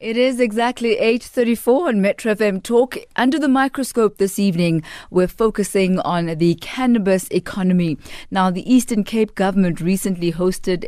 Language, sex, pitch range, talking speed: English, female, 150-195 Hz, 145 wpm